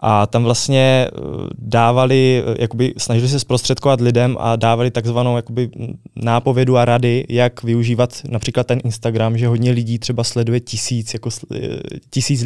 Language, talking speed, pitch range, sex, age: Czech, 140 wpm, 110-125 Hz, male, 20-39